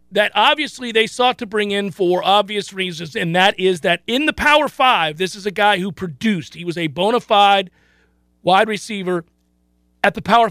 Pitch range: 170-235 Hz